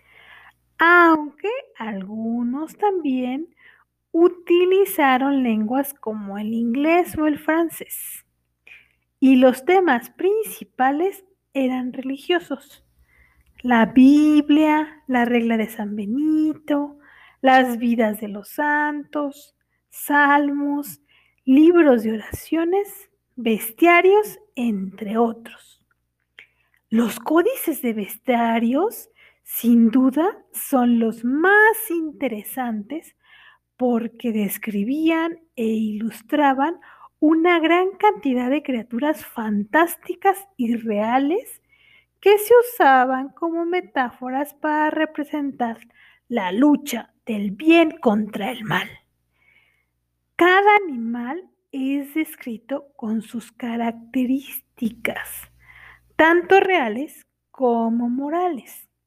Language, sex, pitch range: Spanish, female, 230-330 Hz